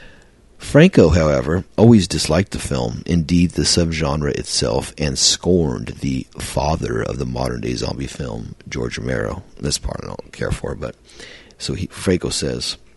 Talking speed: 155 wpm